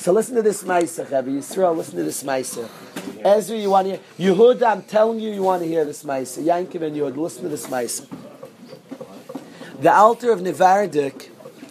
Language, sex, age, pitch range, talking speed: English, male, 40-59, 150-195 Hz, 185 wpm